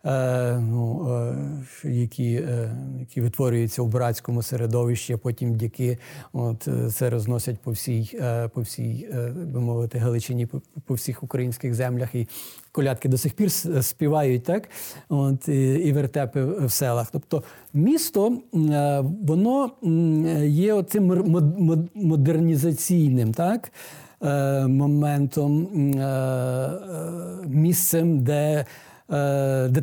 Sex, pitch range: male, 130-160 Hz